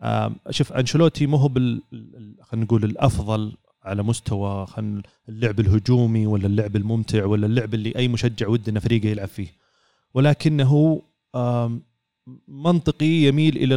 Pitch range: 110-130 Hz